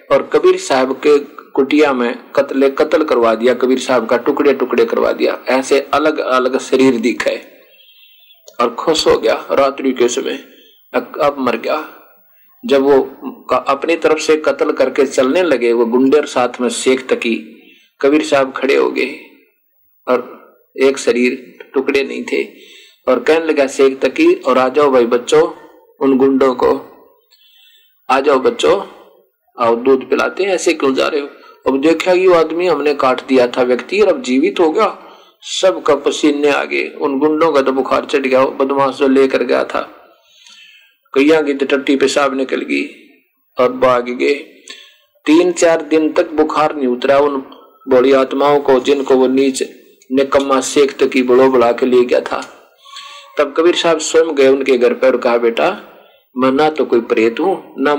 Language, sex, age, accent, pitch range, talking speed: Hindi, male, 50-69, native, 130-180 Hz, 160 wpm